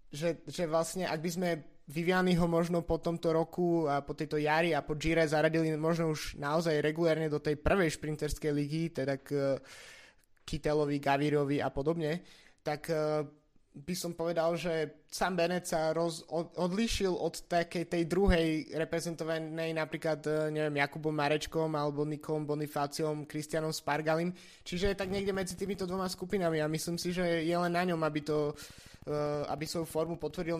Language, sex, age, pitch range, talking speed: Slovak, male, 20-39, 150-170 Hz, 160 wpm